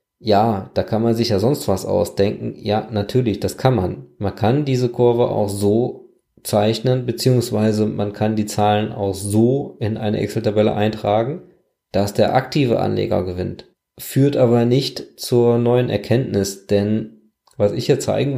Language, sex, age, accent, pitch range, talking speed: German, male, 20-39, German, 105-125 Hz, 155 wpm